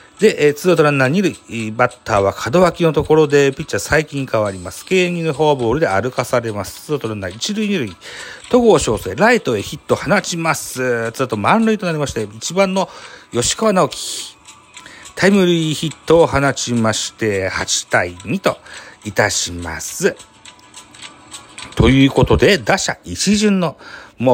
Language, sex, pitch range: Japanese, male, 110-160 Hz